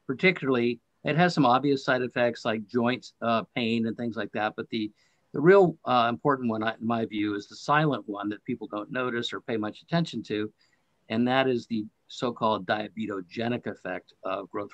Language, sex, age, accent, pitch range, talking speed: English, male, 50-69, American, 110-135 Hz, 195 wpm